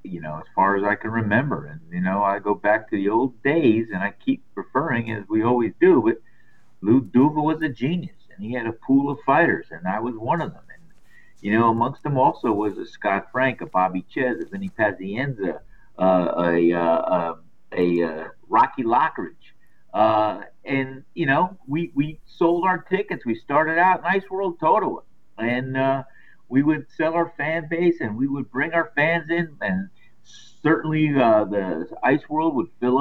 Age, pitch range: 50-69, 115-170 Hz